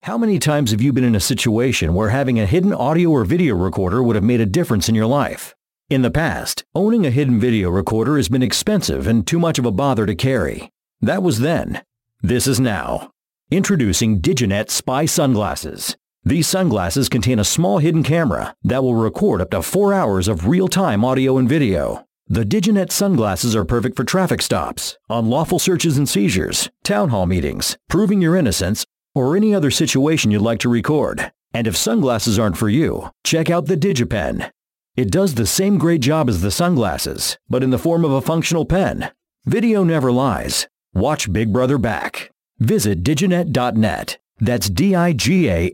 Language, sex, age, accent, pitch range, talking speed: English, male, 50-69, American, 115-175 Hz, 185 wpm